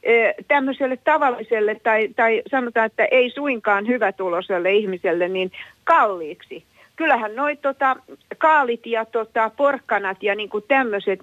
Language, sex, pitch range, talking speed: Finnish, female, 185-255 Hz, 125 wpm